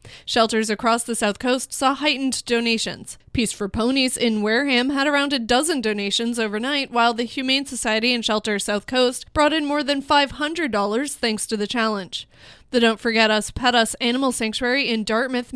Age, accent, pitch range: 20-39, American, 220-260 Hz